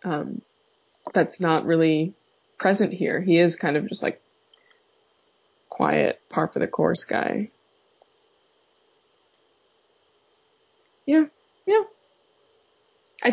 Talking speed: 95 wpm